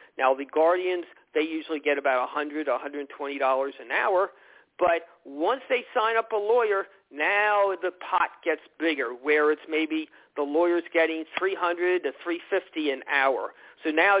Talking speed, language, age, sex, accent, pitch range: 150 wpm, English, 50-69, male, American, 155-235 Hz